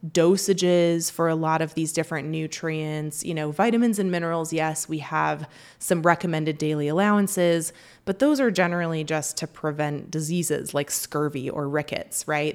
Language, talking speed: English, 160 wpm